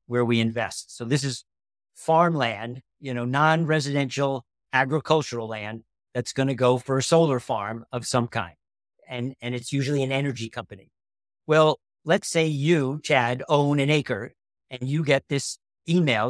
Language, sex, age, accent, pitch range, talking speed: English, male, 50-69, American, 125-170 Hz, 160 wpm